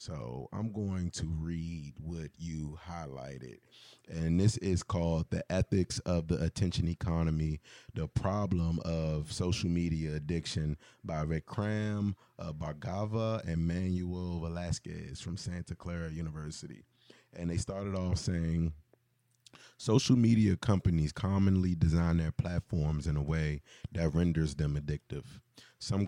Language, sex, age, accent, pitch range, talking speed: English, male, 30-49, American, 80-95 Hz, 125 wpm